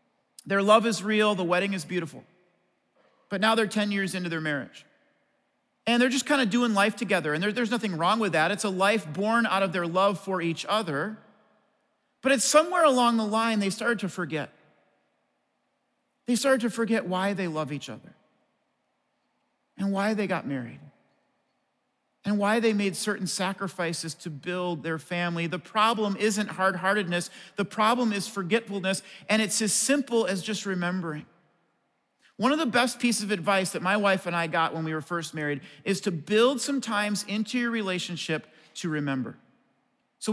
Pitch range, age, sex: 180-220 Hz, 40-59, male